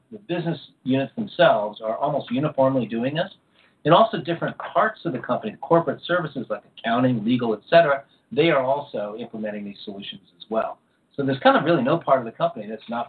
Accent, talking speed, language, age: American, 195 wpm, English, 40-59